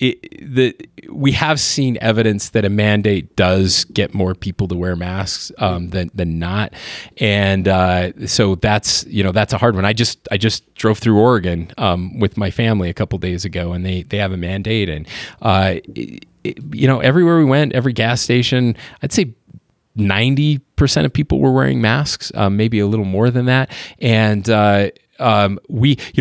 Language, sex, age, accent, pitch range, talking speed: English, male, 30-49, American, 100-120 Hz, 190 wpm